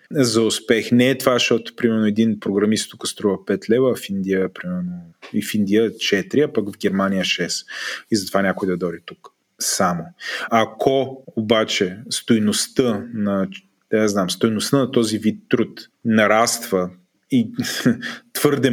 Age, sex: 20-39, male